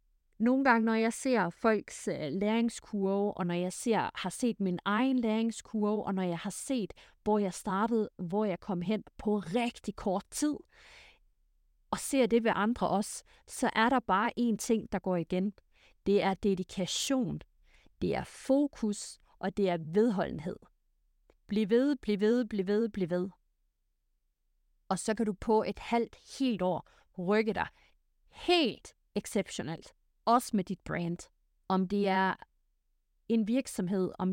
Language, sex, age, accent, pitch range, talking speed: Danish, female, 30-49, native, 180-230 Hz, 150 wpm